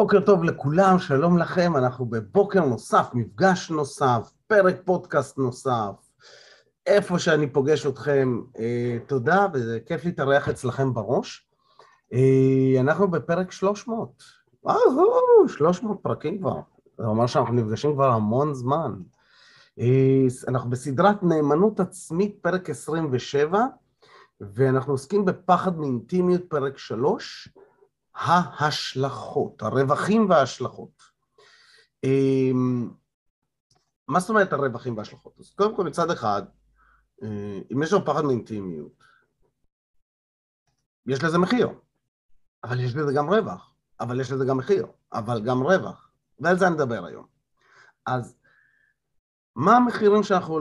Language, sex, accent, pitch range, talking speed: Hebrew, male, native, 130-185 Hz, 110 wpm